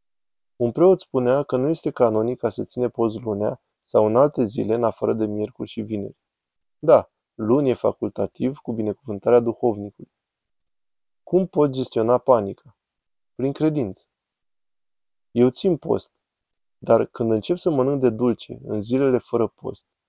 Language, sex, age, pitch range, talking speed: Romanian, male, 20-39, 110-135 Hz, 145 wpm